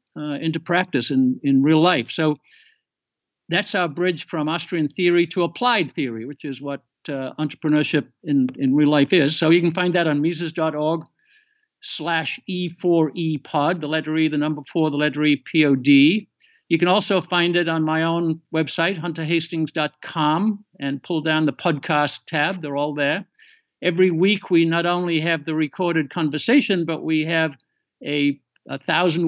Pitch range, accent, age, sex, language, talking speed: 150-175 Hz, American, 60-79, male, English, 165 wpm